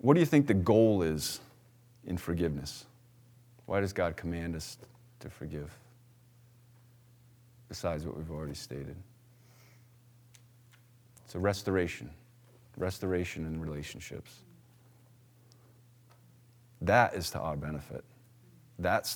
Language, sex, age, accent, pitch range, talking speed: English, male, 40-59, American, 90-120 Hz, 105 wpm